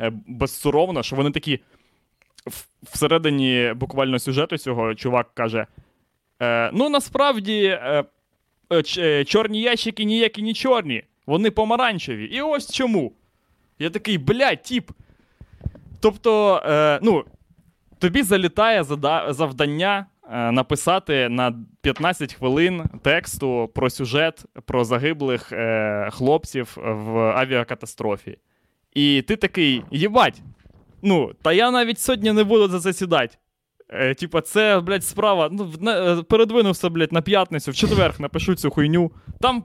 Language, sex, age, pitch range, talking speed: Ukrainian, male, 20-39, 135-200 Hz, 110 wpm